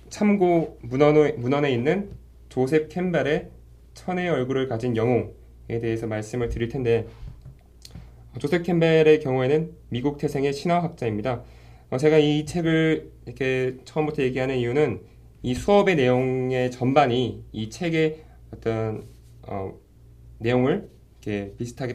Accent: native